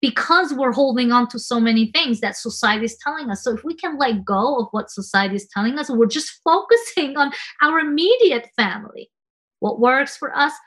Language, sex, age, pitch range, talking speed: English, female, 30-49, 215-280 Hz, 200 wpm